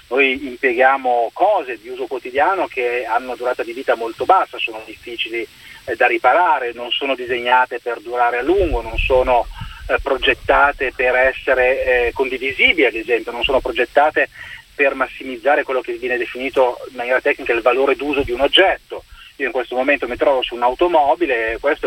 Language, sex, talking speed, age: Italian, male, 175 wpm, 30-49